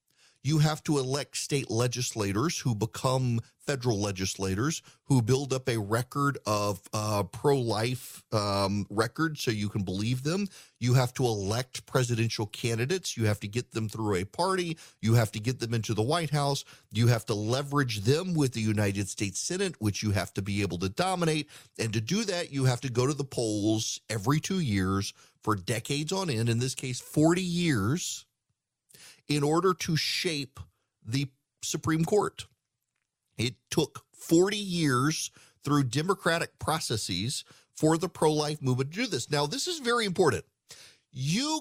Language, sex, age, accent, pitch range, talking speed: English, male, 40-59, American, 115-160 Hz, 165 wpm